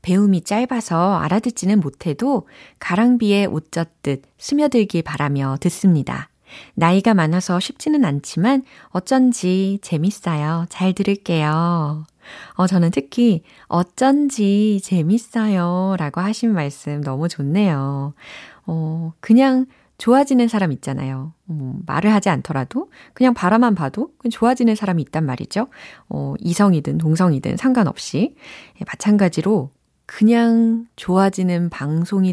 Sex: female